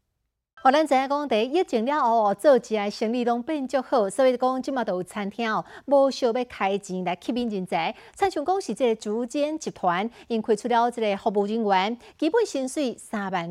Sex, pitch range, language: female, 205-275 Hz, Chinese